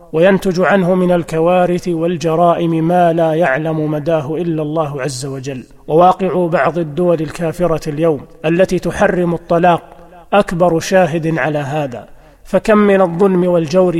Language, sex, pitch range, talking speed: Arabic, male, 165-185 Hz, 125 wpm